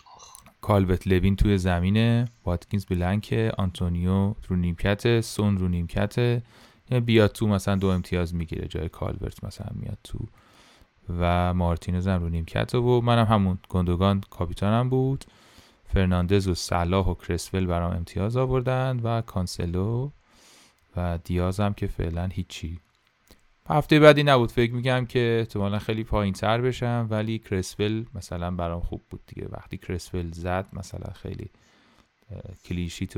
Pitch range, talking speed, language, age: 90-110 Hz, 130 wpm, Persian, 30-49